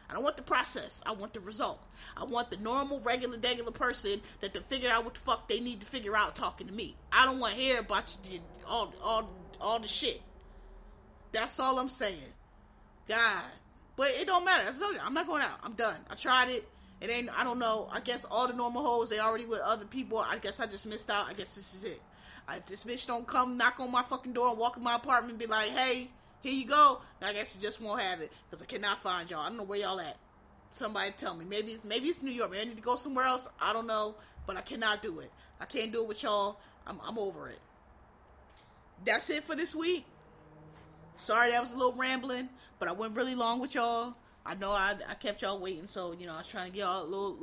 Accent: American